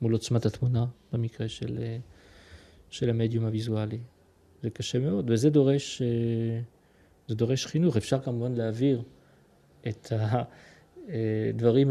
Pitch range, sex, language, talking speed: 110-130 Hz, male, Hebrew, 100 wpm